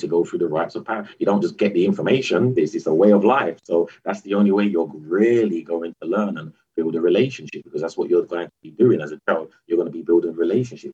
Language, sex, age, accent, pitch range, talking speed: English, male, 30-49, British, 75-85 Hz, 275 wpm